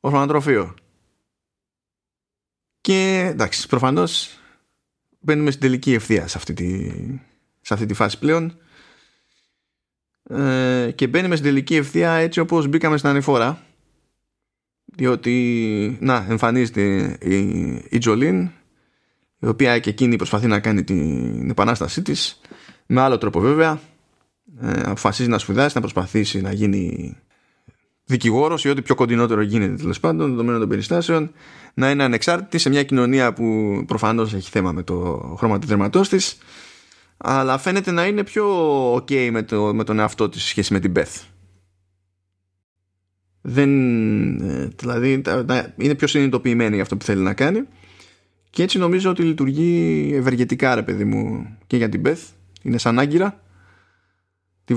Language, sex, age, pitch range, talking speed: Greek, male, 20-39, 95-140 Hz, 140 wpm